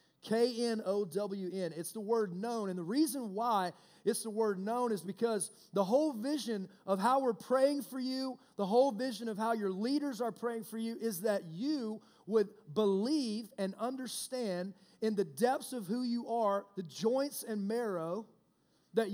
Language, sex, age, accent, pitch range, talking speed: English, male, 30-49, American, 200-255 Hz, 170 wpm